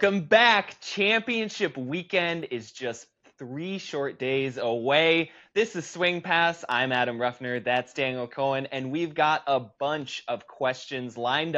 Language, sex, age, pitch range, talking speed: English, male, 20-39, 120-150 Hz, 145 wpm